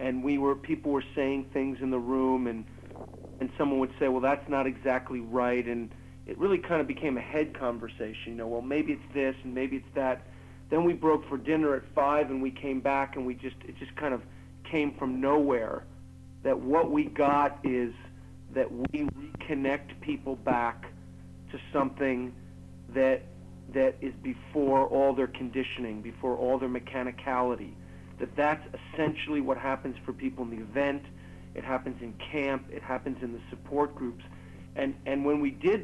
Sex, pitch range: male, 125-145 Hz